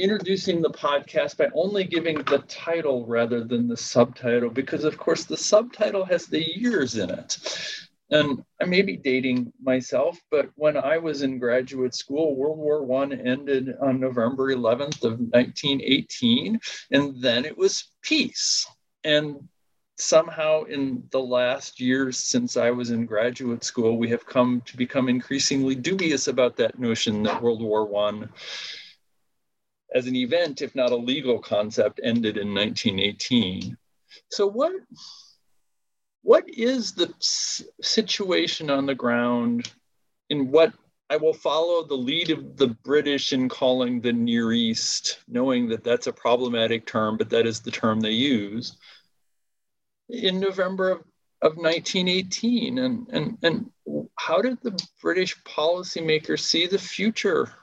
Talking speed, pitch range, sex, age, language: 145 wpm, 120-190 Hz, male, 40-59, English